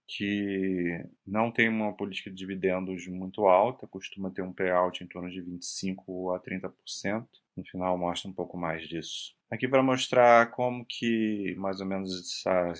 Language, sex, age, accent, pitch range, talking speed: Portuguese, male, 30-49, Brazilian, 90-100 Hz, 165 wpm